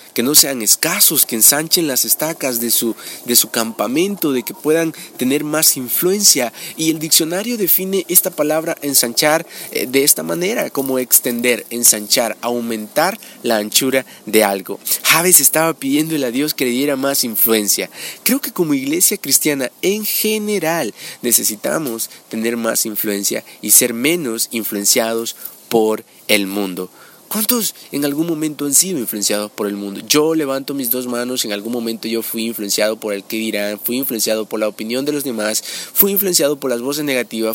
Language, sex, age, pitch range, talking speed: Spanish, male, 30-49, 115-160 Hz, 165 wpm